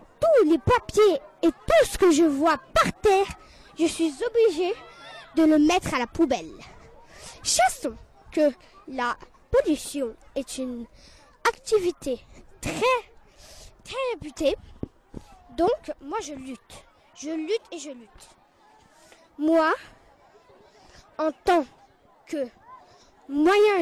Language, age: French, 20-39